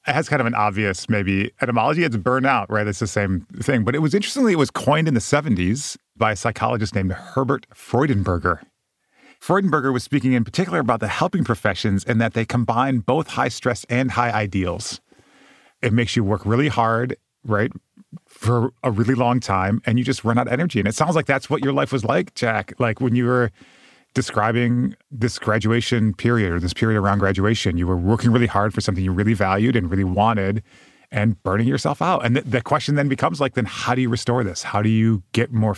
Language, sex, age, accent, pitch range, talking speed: English, male, 30-49, American, 105-125 Hz, 215 wpm